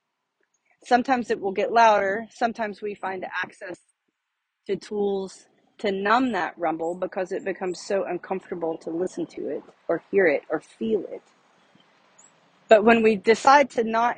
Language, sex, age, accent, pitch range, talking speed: English, female, 30-49, American, 195-245 Hz, 150 wpm